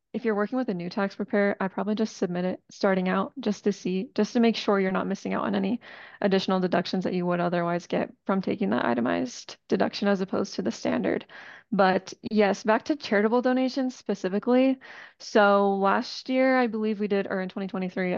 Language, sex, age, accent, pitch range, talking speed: English, female, 20-39, American, 190-220 Hz, 205 wpm